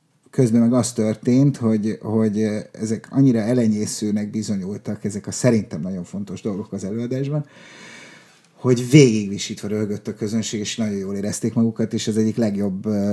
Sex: male